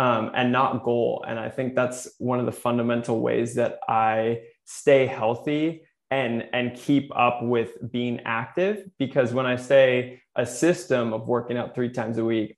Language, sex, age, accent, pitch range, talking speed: English, male, 20-39, American, 120-135 Hz, 175 wpm